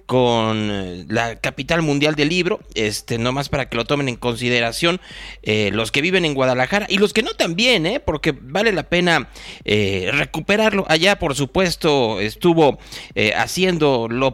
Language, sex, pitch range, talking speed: Spanish, male, 125-175 Hz, 165 wpm